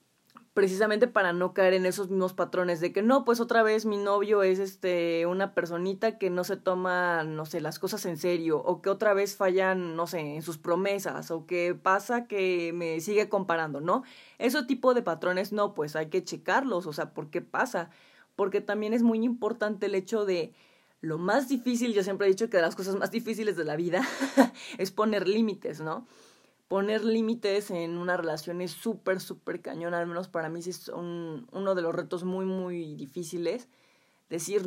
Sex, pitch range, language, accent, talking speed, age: female, 175-215 Hz, Spanish, Mexican, 195 wpm, 20-39